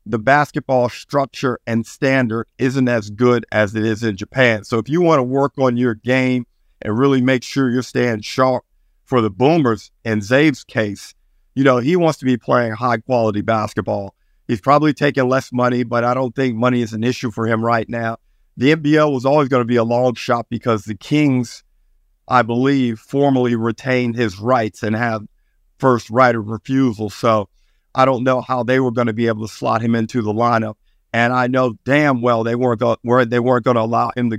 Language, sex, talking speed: English, male, 200 wpm